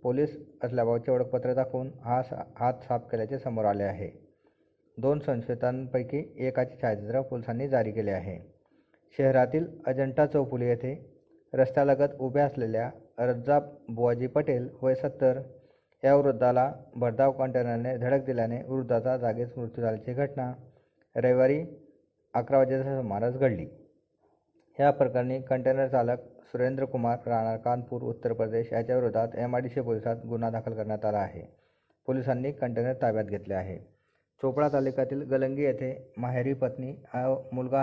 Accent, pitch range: native, 120-135 Hz